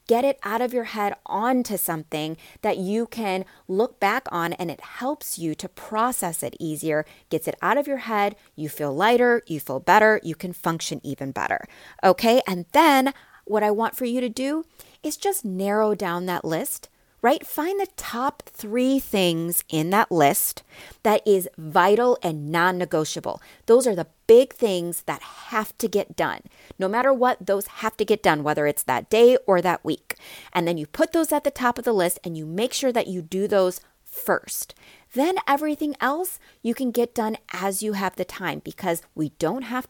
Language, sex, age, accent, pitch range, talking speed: English, female, 30-49, American, 175-255 Hz, 195 wpm